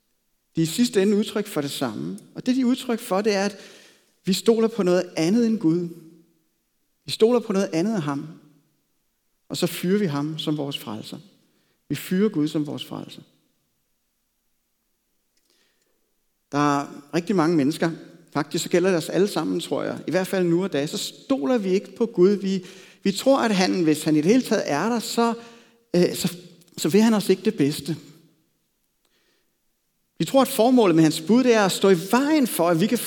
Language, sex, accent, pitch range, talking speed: Danish, male, native, 165-235 Hz, 200 wpm